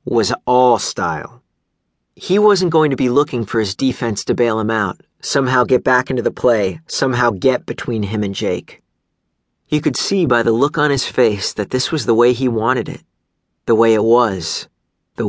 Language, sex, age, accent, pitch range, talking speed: English, male, 40-59, American, 110-145 Hz, 195 wpm